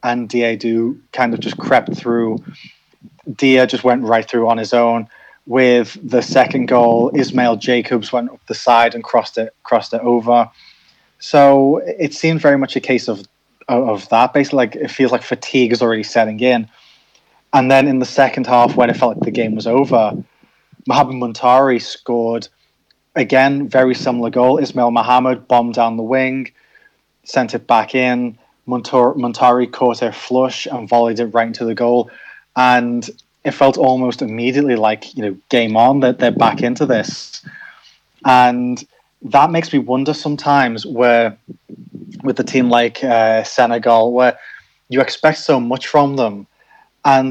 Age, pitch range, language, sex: 20-39, 115-130 Hz, English, male